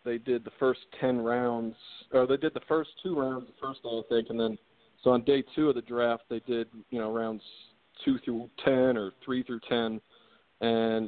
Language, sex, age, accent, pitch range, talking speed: English, male, 40-59, American, 110-120 Hz, 215 wpm